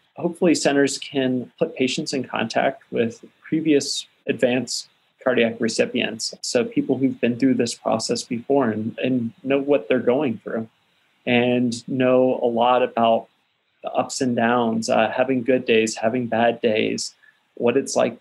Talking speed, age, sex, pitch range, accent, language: 150 wpm, 30-49, male, 115-130 Hz, American, English